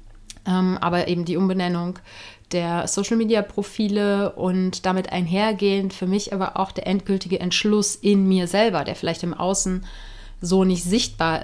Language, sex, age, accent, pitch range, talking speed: German, female, 30-49, German, 185-220 Hz, 135 wpm